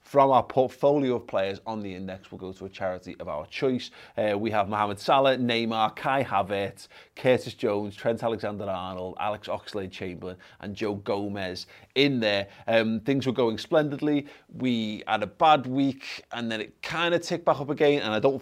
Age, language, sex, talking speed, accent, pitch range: 30-49, English, male, 185 wpm, British, 105-135 Hz